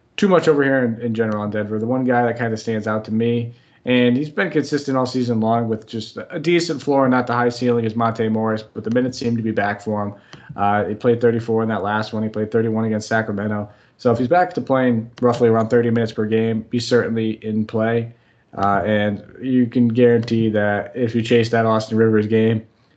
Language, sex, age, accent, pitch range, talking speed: English, male, 20-39, American, 110-120 Hz, 235 wpm